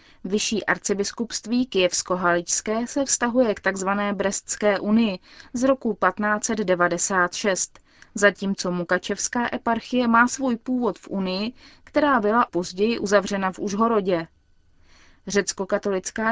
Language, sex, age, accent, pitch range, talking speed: Czech, female, 20-39, native, 185-230 Hz, 100 wpm